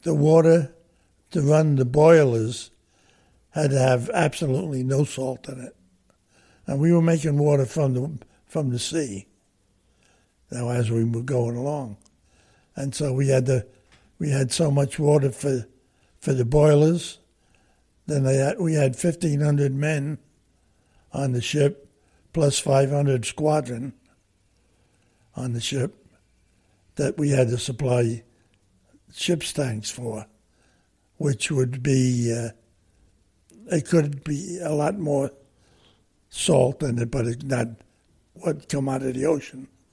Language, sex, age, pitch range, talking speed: English, male, 60-79, 110-145 Hz, 140 wpm